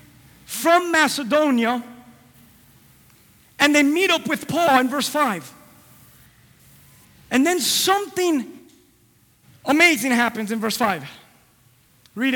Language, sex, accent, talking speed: English, male, American, 95 wpm